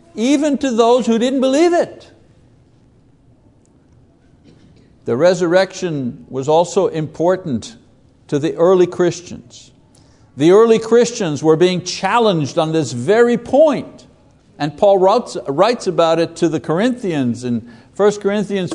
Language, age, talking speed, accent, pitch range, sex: English, 60-79, 120 wpm, American, 145-225 Hz, male